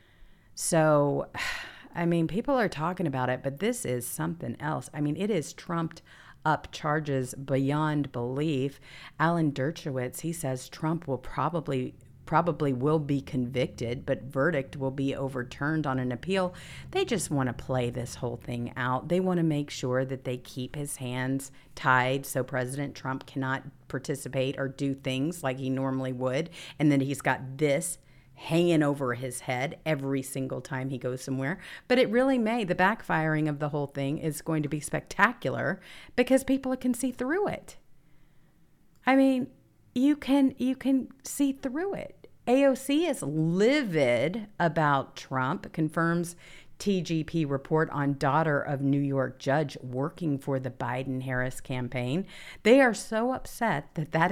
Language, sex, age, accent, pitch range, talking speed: English, female, 50-69, American, 130-170 Hz, 160 wpm